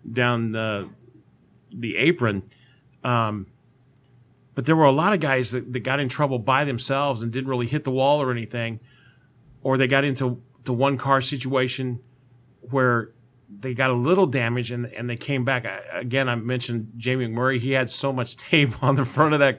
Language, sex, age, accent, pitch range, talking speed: English, male, 40-59, American, 115-135 Hz, 190 wpm